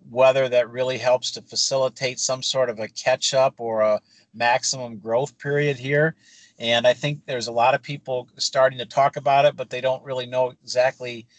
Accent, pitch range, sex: American, 120-135 Hz, male